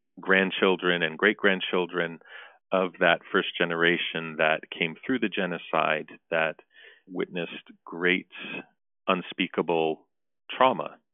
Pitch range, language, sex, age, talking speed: 85-95 Hz, English, male, 40-59, 90 wpm